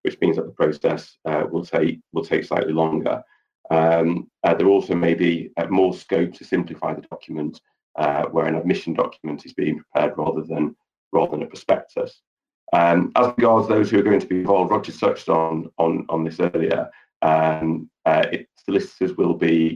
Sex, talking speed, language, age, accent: male, 190 wpm, English, 40-59, British